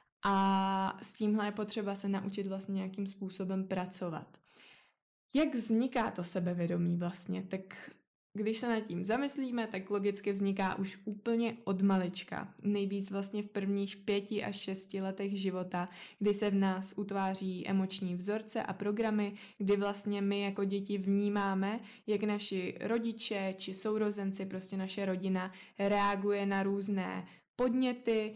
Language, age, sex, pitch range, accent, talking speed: Czech, 20-39, female, 190-205 Hz, native, 140 wpm